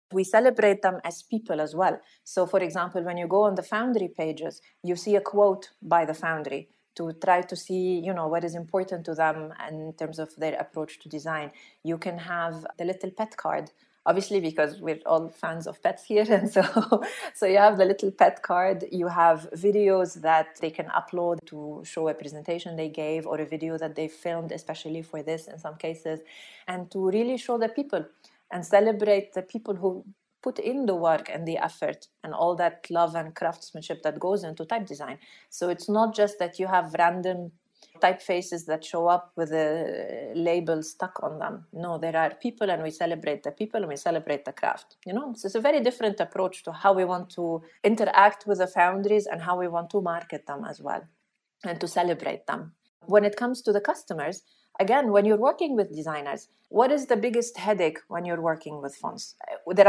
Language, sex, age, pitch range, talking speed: English, female, 30-49, 165-205 Hz, 205 wpm